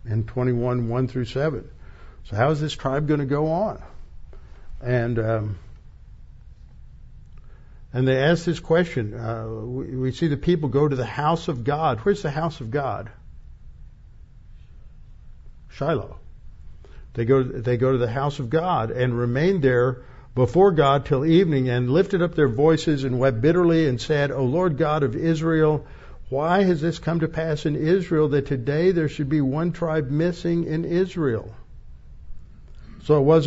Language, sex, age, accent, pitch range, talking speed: English, male, 60-79, American, 115-150 Hz, 165 wpm